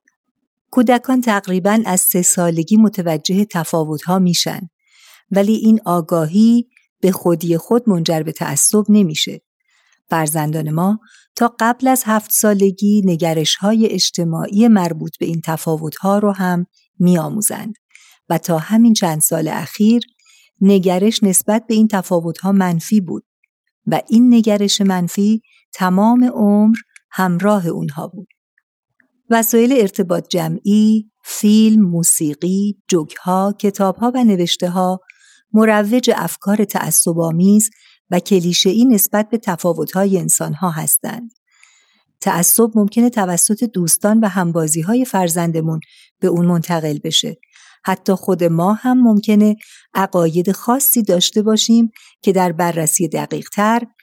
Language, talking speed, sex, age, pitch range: Persian, 110 wpm, female, 50-69, 175-220 Hz